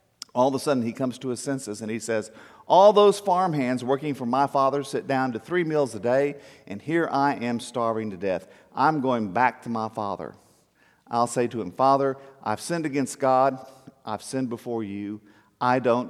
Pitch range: 105-135 Hz